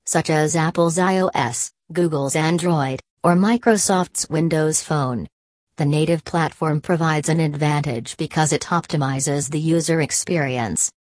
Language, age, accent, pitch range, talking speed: English, 40-59, American, 150-175 Hz, 120 wpm